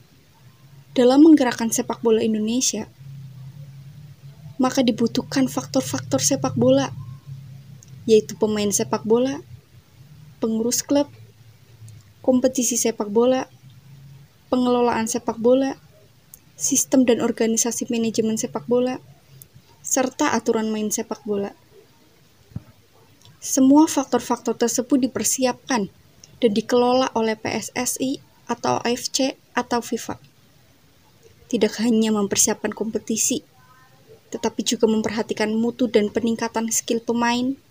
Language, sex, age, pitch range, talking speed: Indonesian, female, 20-39, 165-245 Hz, 90 wpm